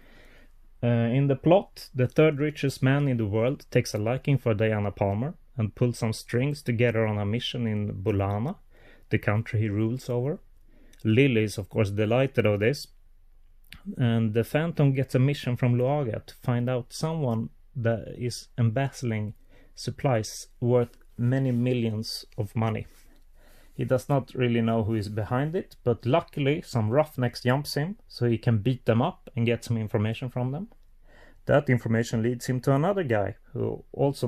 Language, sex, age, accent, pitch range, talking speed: English, male, 30-49, Swedish, 110-135 Hz, 170 wpm